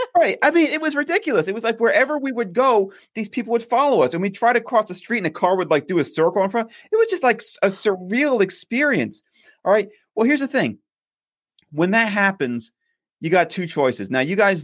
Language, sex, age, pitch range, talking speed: English, male, 30-49, 140-210 Hz, 240 wpm